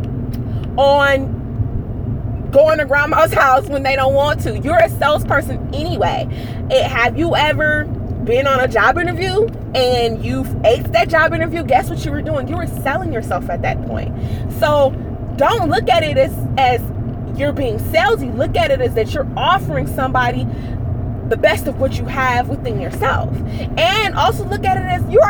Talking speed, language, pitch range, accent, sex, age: 175 wpm, English, 110-140 Hz, American, female, 20-39